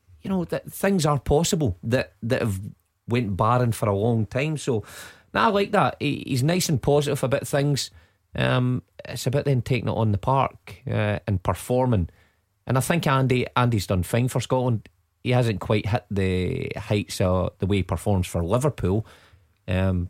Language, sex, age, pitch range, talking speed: English, male, 30-49, 95-125 Hz, 190 wpm